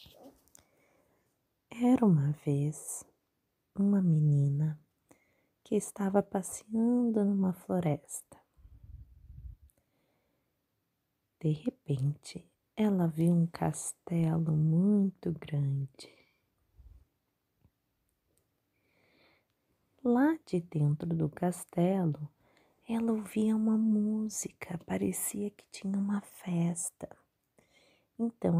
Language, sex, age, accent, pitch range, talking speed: Portuguese, female, 20-39, Brazilian, 160-200 Hz, 70 wpm